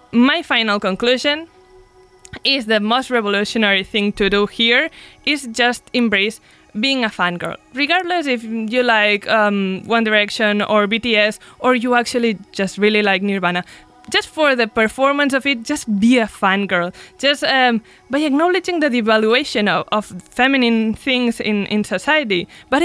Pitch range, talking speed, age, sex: 210-280 Hz, 150 wpm, 20-39, female